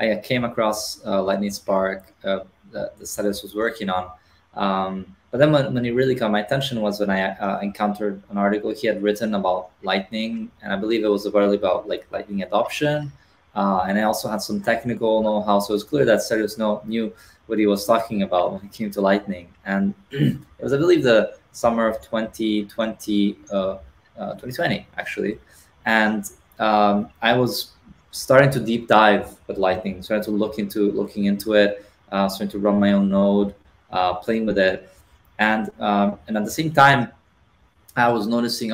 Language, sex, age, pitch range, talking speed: Turkish, male, 20-39, 100-115 Hz, 185 wpm